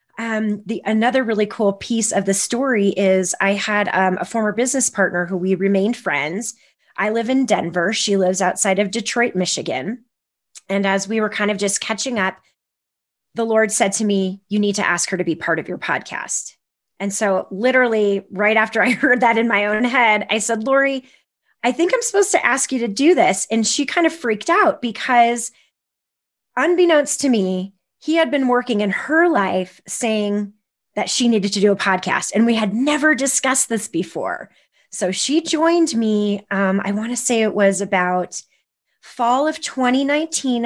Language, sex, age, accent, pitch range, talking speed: English, female, 30-49, American, 195-240 Hz, 190 wpm